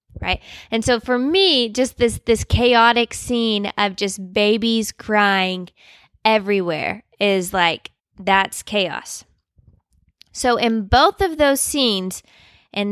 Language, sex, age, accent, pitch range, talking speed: English, female, 20-39, American, 200-245 Hz, 120 wpm